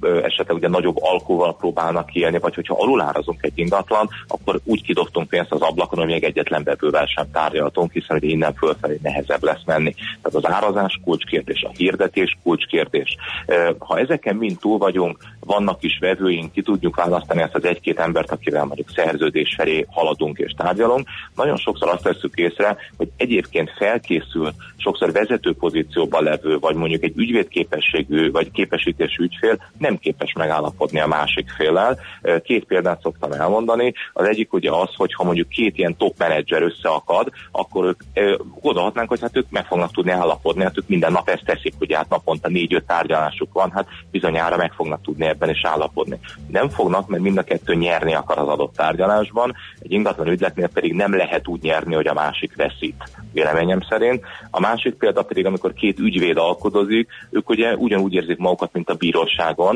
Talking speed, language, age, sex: 170 wpm, Hungarian, 30-49, male